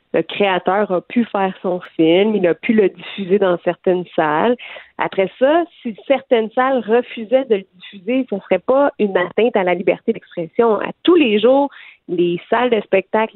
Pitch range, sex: 185-235 Hz, female